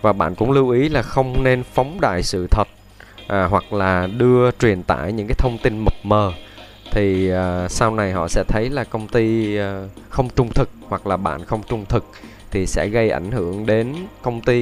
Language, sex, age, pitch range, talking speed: Vietnamese, male, 20-39, 95-125 Hz, 215 wpm